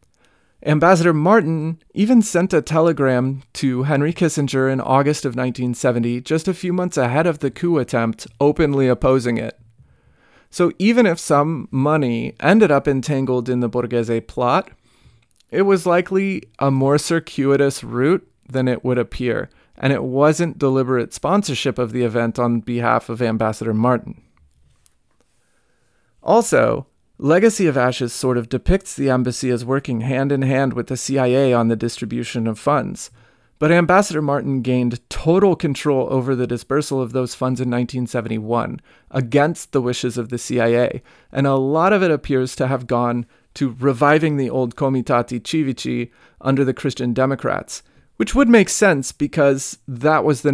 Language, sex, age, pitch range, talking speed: English, male, 30-49, 120-150 Hz, 150 wpm